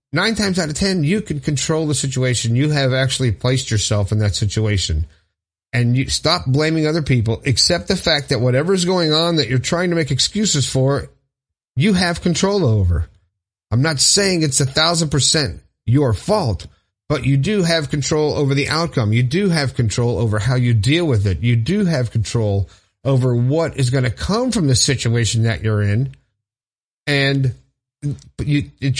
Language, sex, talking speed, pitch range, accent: English, male, 180 wpm, 115-160 Hz, American